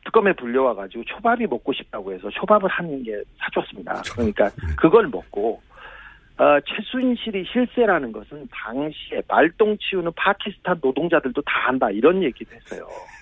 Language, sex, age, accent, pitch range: Korean, male, 40-59, native, 145-210 Hz